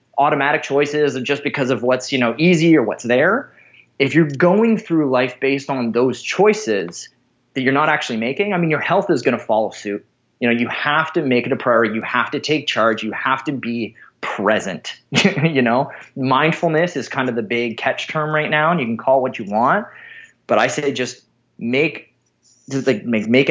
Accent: American